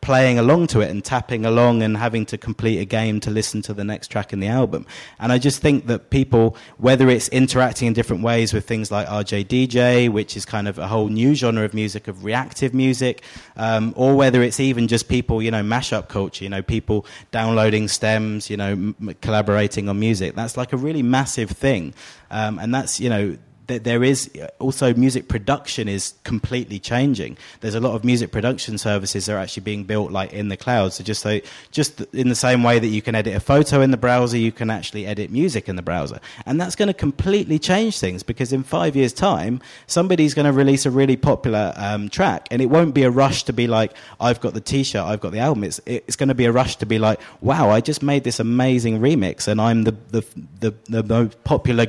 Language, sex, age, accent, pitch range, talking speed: English, male, 20-39, British, 105-130 Hz, 225 wpm